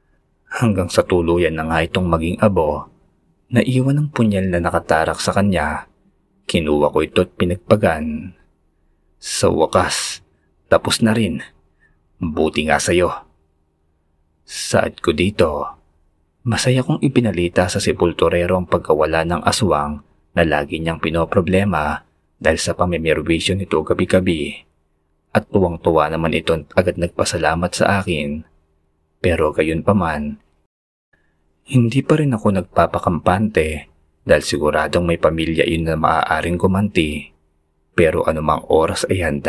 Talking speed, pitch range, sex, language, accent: 125 wpm, 80-95 Hz, male, Filipino, native